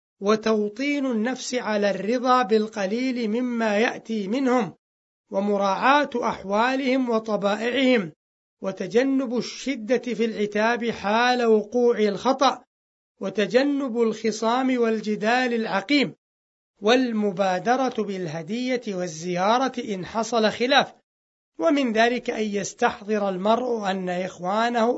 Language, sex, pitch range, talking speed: Arabic, male, 200-245 Hz, 85 wpm